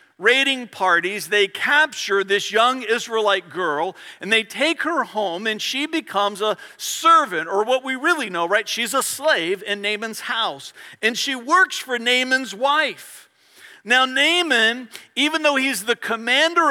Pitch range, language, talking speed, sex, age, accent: 195-280 Hz, English, 155 wpm, male, 50-69, American